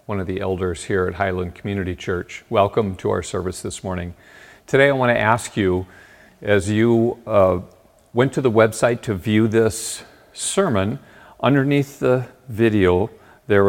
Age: 50-69